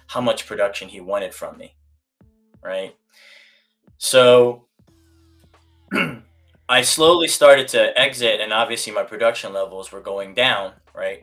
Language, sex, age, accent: English, male, 20-39, American